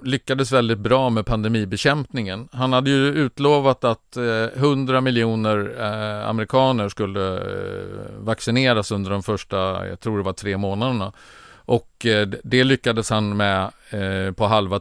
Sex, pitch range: male, 100-120 Hz